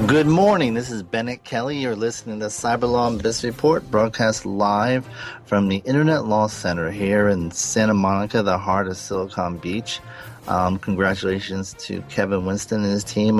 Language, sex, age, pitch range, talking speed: English, male, 30-49, 95-120 Hz, 165 wpm